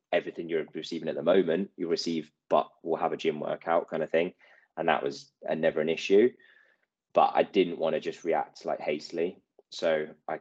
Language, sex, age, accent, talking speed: English, male, 20-39, British, 200 wpm